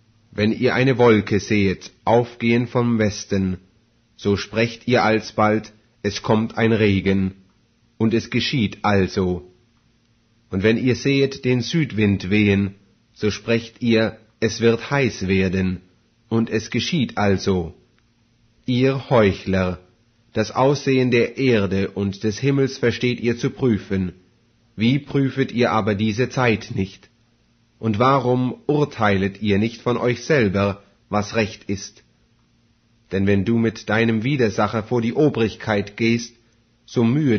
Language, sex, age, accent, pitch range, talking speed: English, male, 30-49, German, 100-120 Hz, 130 wpm